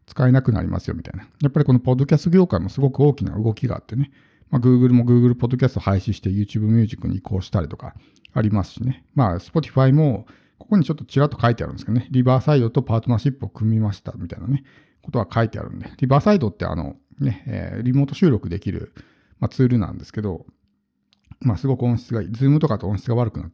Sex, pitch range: male, 105-135 Hz